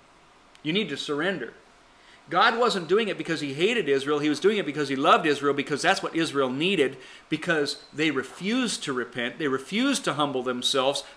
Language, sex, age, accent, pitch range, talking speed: English, male, 40-59, American, 130-165 Hz, 190 wpm